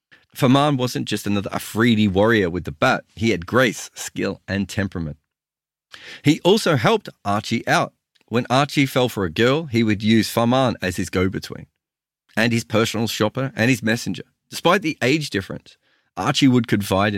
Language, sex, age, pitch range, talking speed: English, male, 40-59, 95-130 Hz, 165 wpm